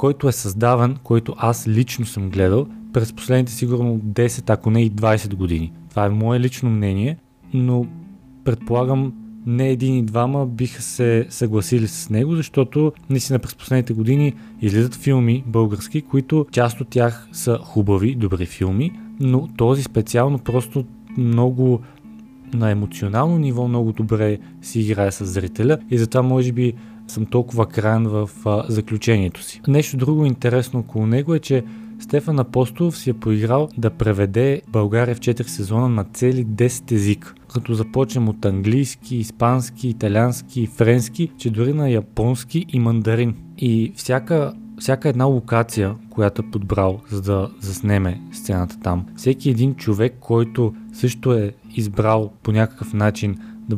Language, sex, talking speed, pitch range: Bulgarian, male, 145 wpm, 110-130 Hz